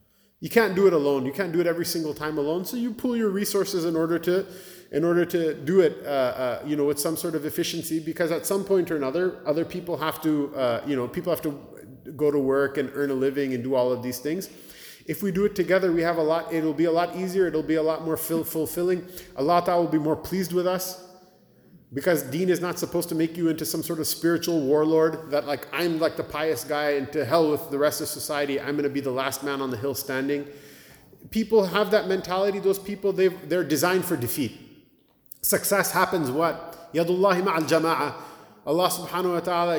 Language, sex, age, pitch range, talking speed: English, male, 30-49, 150-180 Hz, 225 wpm